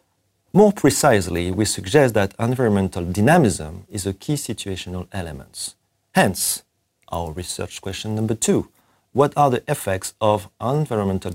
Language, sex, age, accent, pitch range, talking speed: French, male, 40-59, French, 95-115 Hz, 125 wpm